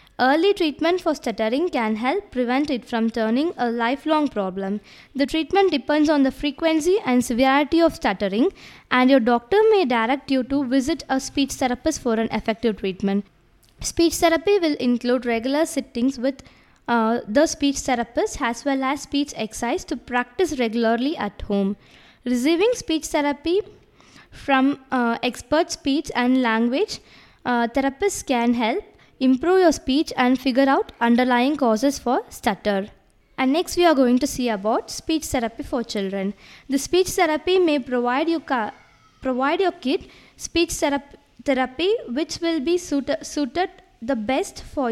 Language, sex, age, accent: English, female, 20-39, Indian